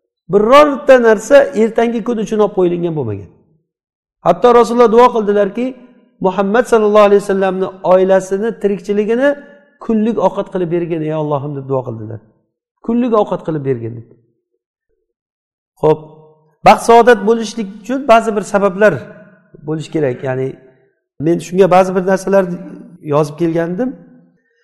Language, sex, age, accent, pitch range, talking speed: Russian, male, 50-69, Turkish, 175-235 Hz, 105 wpm